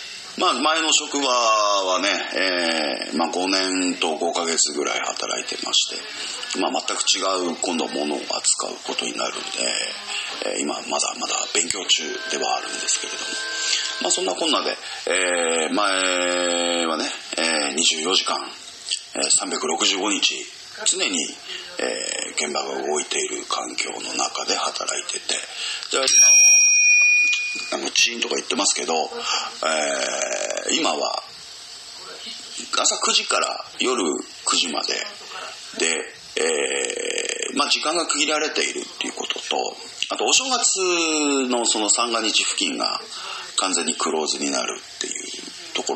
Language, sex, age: Japanese, male, 40-59